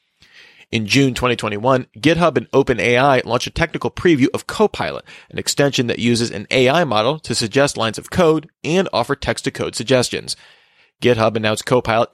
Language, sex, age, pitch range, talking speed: English, male, 30-49, 120-150 Hz, 155 wpm